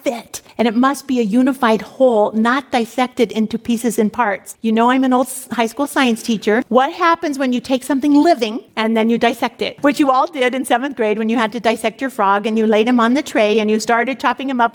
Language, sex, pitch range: English, female, 230-270 Hz